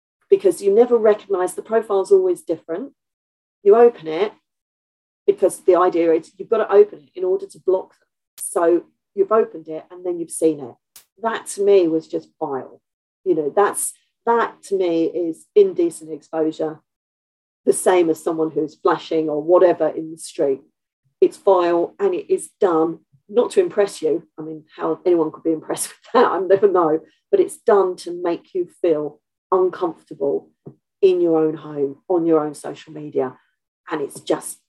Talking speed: 175 wpm